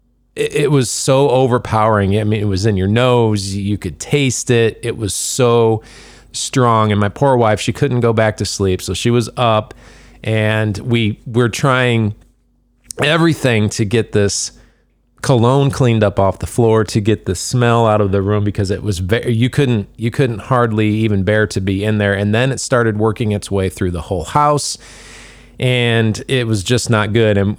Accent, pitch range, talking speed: American, 105-125 Hz, 190 wpm